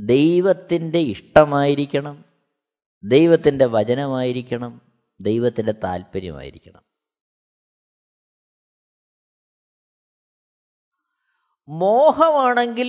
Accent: native